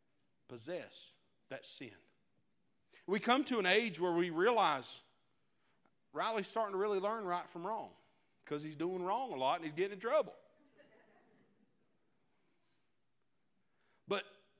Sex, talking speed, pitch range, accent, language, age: male, 125 wpm, 155-220 Hz, American, English, 50-69